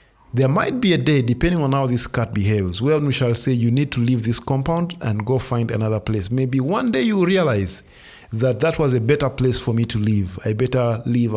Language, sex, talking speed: English, male, 230 wpm